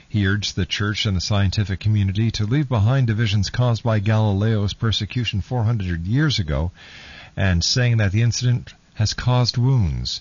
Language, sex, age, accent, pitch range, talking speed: English, male, 50-69, American, 90-120 Hz, 165 wpm